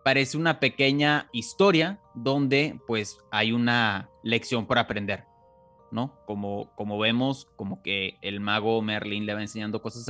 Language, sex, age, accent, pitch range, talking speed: Spanish, male, 30-49, Mexican, 105-145 Hz, 145 wpm